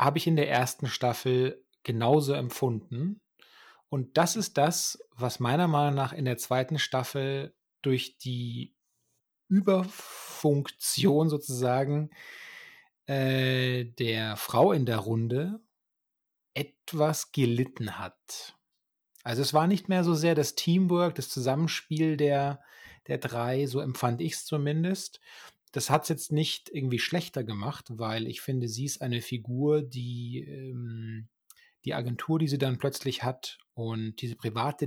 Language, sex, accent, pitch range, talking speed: German, male, German, 125-155 Hz, 135 wpm